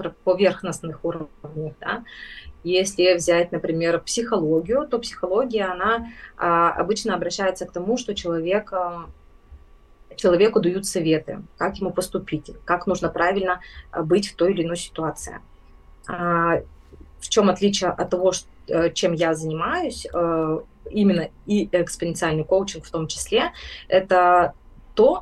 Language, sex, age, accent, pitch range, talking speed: Russian, female, 20-39, native, 165-200 Hz, 125 wpm